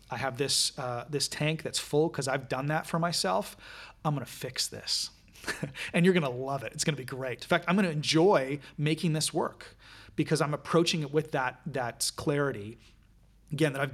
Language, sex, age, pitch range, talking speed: English, male, 30-49, 135-165 Hz, 215 wpm